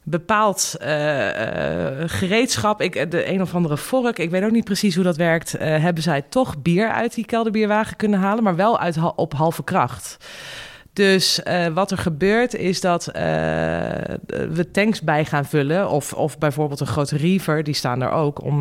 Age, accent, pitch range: 20-39, Dutch, 155-210 Hz